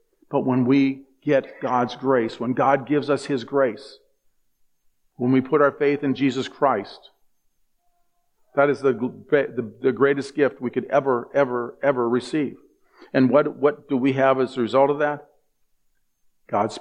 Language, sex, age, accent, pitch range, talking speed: English, male, 50-69, American, 125-150 Hz, 160 wpm